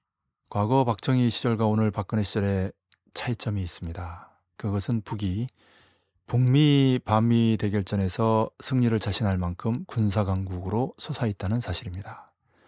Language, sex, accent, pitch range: Korean, male, native, 95-120 Hz